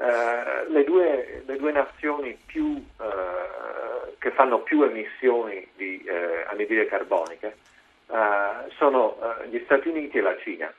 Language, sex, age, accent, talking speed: Italian, male, 40-59, native, 140 wpm